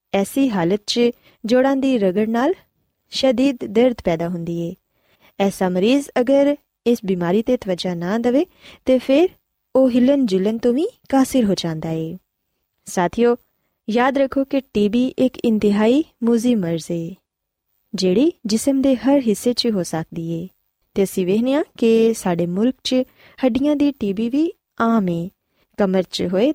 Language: Punjabi